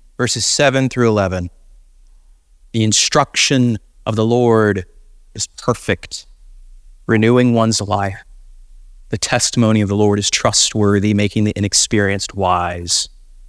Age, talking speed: 30-49, 110 wpm